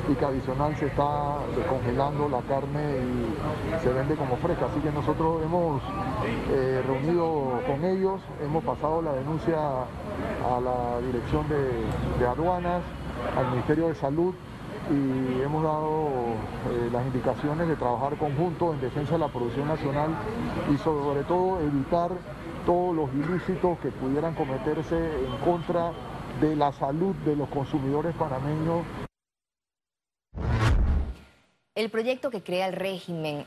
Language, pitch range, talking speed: Spanish, 145-180 Hz, 135 wpm